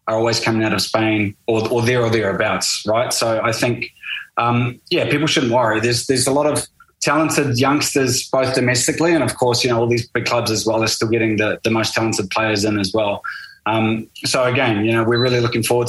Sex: male